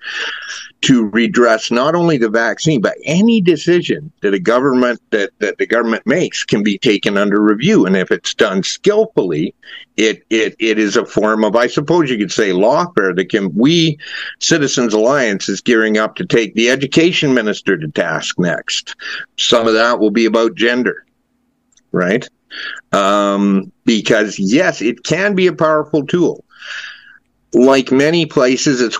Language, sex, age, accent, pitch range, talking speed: English, male, 50-69, American, 105-135 Hz, 160 wpm